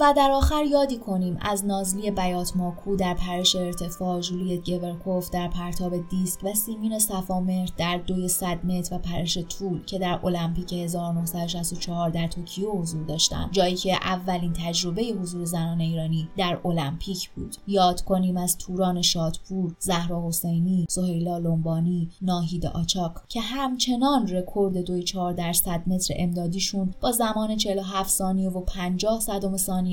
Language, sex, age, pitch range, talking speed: Persian, female, 20-39, 175-195 Hz, 135 wpm